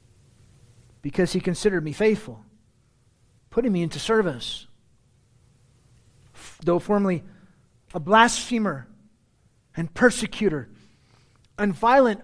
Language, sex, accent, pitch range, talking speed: English, male, American, 125-205 Hz, 85 wpm